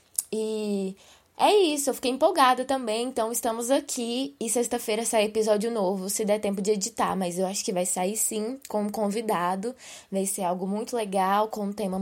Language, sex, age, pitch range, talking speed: Portuguese, female, 20-39, 195-240 Hz, 190 wpm